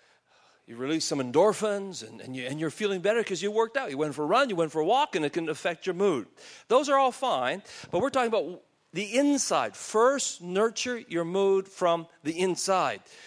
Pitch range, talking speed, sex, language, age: 170-230 Hz, 210 wpm, male, English, 50-69